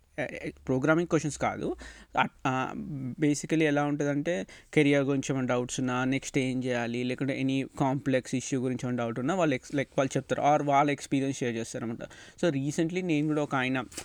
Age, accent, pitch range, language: 20-39, native, 130-155 Hz, Telugu